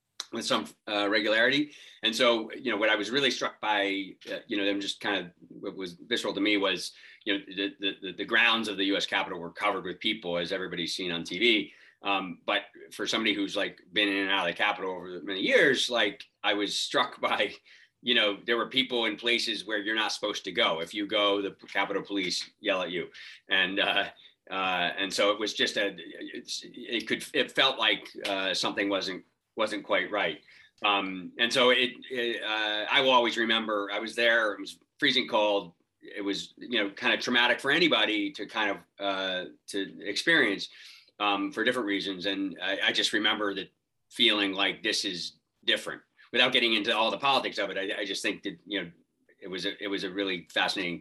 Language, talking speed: English, 210 wpm